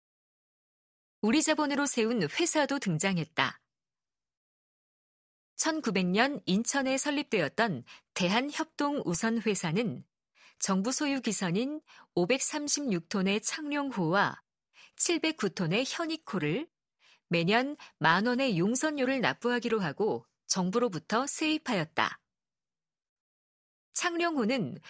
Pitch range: 195-290 Hz